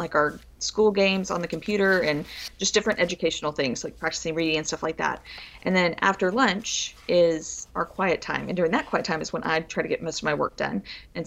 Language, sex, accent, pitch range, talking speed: English, female, American, 165-195 Hz, 235 wpm